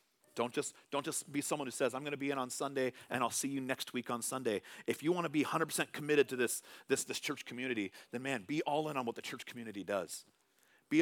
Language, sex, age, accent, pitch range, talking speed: English, male, 40-59, American, 120-150 Hz, 250 wpm